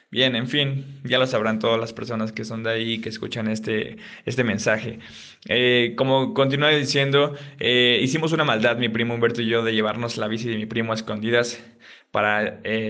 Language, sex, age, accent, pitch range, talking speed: Spanish, male, 20-39, Mexican, 115-130 Hz, 200 wpm